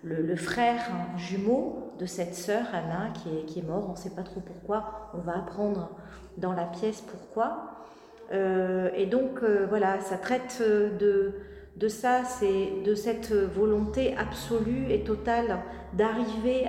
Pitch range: 185-230 Hz